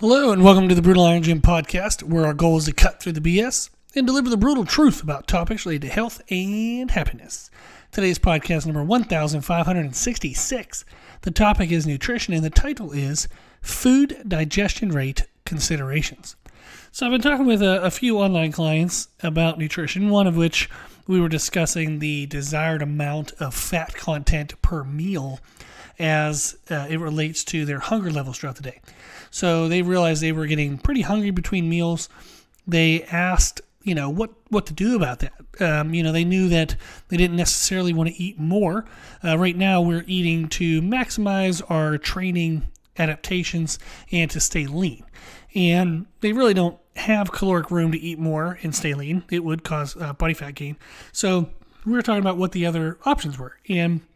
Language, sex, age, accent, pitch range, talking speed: English, male, 30-49, American, 155-190 Hz, 180 wpm